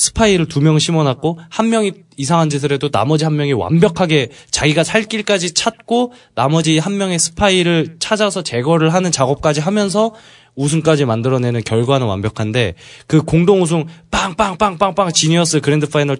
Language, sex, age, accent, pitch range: Korean, male, 20-39, native, 130-185 Hz